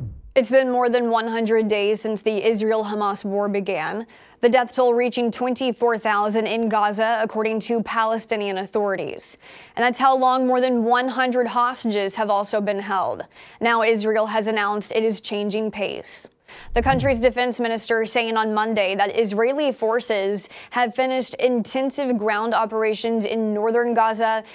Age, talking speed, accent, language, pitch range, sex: 20-39, 145 wpm, American, English, 215-245 Hz, female